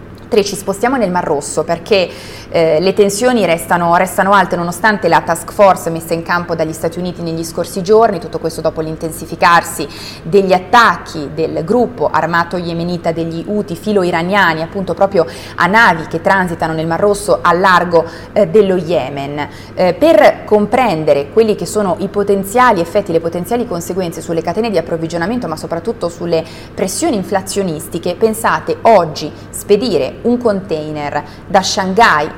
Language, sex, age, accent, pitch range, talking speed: Italian, female, 30-49, native, 165-210 Hz, 150 wpm